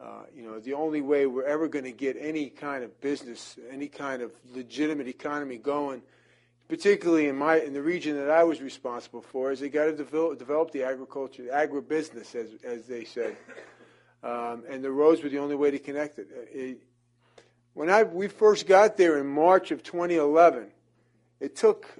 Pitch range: 125-160 Hz